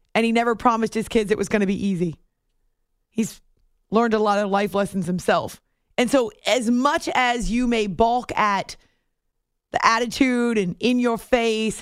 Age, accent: 30-49, American